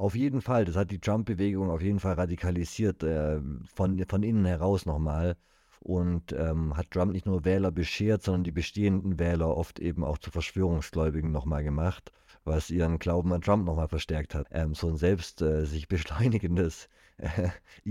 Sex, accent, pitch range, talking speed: male, German, 80-95 Hz, 175 wpm